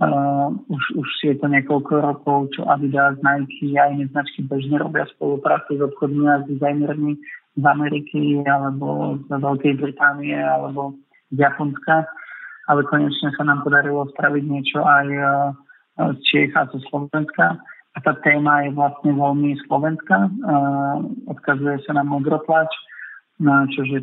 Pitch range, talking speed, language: 140-150 Hz, 135 wpm, Slovak